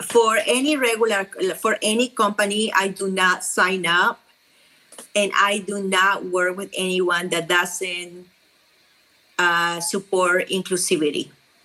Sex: female